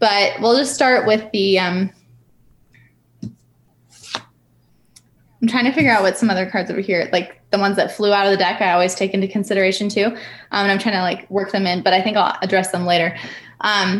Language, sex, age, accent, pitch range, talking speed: English, female, 10-29, American, 185-225 Hz, 220 wpm